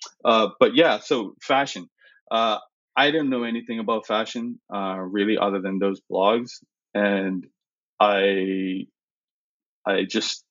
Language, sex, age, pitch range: English, male, 20-39, 95-105 Hz